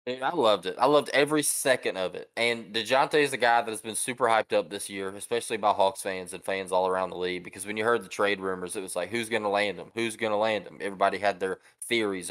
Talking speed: 280 wpm